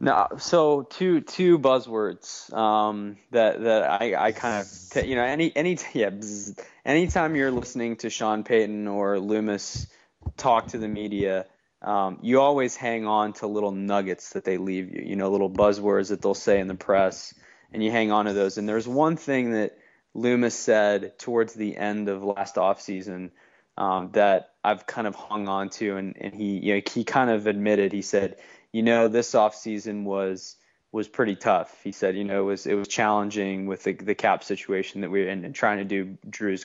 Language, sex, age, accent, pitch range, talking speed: English, male, 20-39, American, 100-115 Hz, 200 wpm